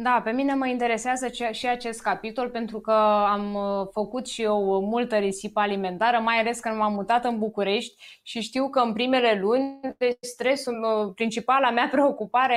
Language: Romanian